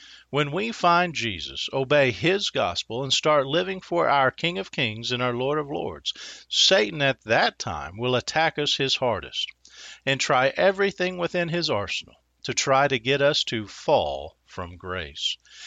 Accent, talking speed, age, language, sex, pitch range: American, 170 wpm, 50-69, English, male, 120-160 Hz